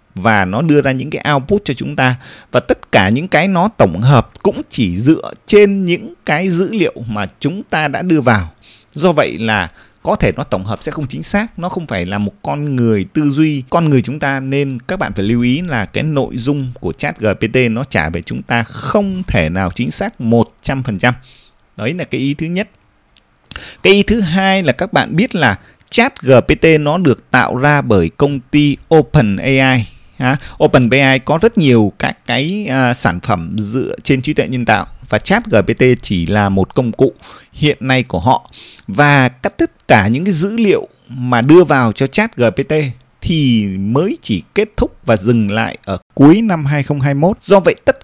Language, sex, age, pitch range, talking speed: Vietnamese, male, 20-39, 115-170 Hz, 205 wpm